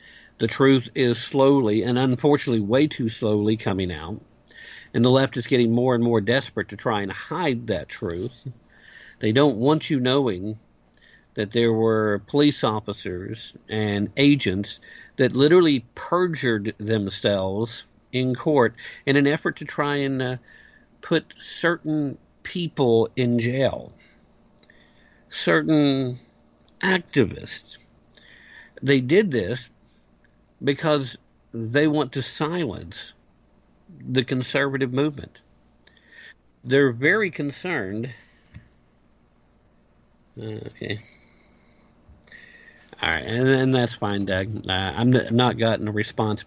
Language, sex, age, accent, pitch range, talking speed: English, male, 50-69, American, 105-135 Hz, 110 wpm